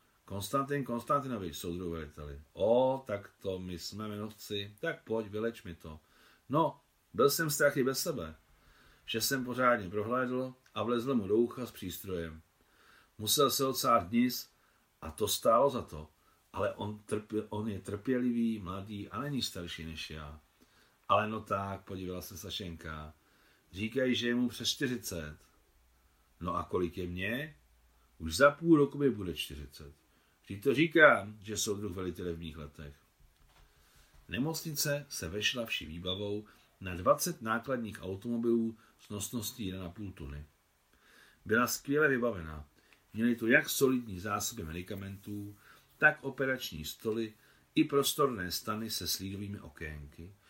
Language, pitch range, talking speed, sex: Czech, 85-120 Hz, 140 wpm, male